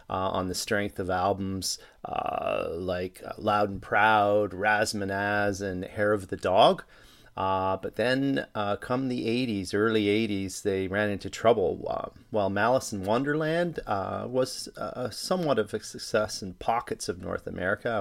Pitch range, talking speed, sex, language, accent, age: 95-115 Hz, 160 wpm, male, English, American, 30-49